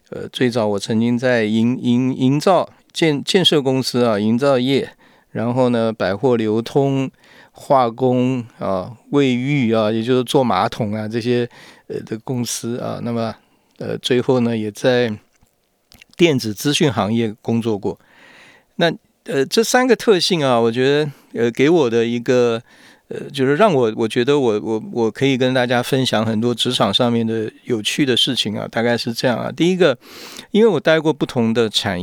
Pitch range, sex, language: 115-135 Hz, male, Chinese